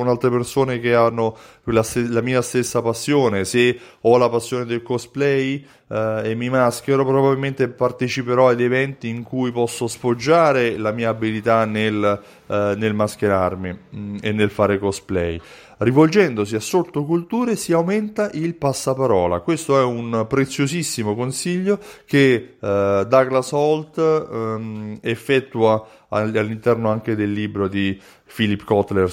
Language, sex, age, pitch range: Italian, male, 30-49, 105-135 Hz